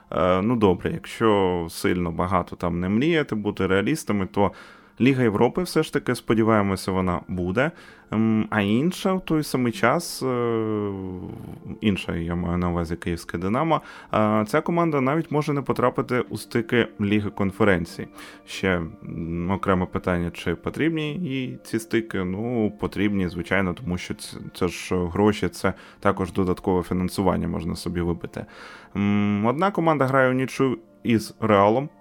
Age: 20-39